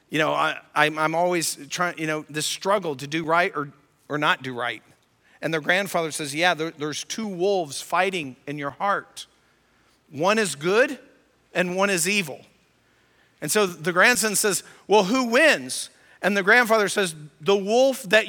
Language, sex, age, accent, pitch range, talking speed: English, male, 50-69, American, 180-255 Hz, 175 wpm